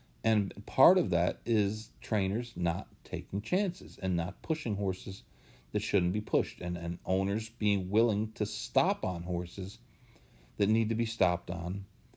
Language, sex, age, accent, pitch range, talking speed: English, male, 40-59, American, 90-110 Hz, 160 wpm